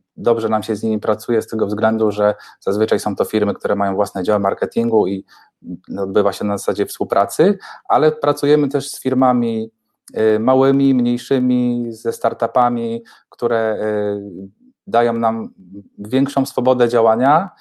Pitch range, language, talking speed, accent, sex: 100-125 Hz, Polish, 135 wpm, native, male